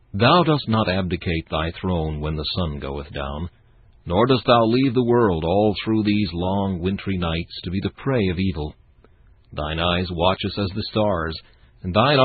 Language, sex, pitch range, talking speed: English, male, 85-110 Hz, 185 wpm